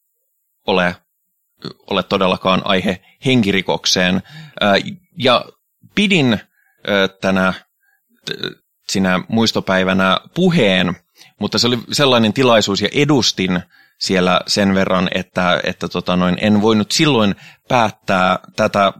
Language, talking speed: Finnish, 85 wpm